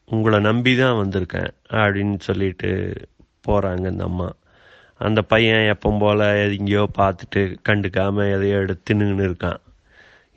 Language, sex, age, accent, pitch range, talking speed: Tamil, male, 30-49, native, 95-110 Hz, 110 wpm